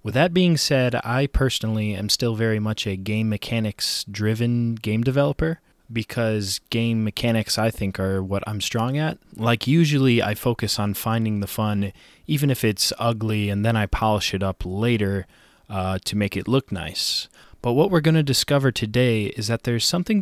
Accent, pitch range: American, 105-130 Hz